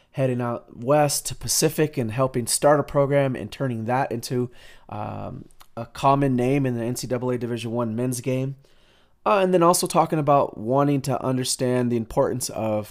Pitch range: 115-135 Hz